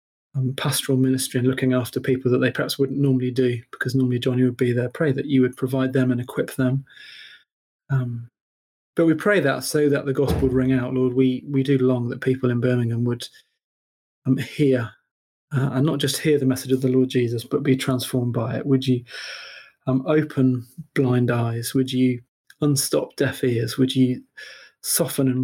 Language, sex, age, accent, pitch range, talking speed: English, male, 30-49, British, 125-140 Hz, 195 wpm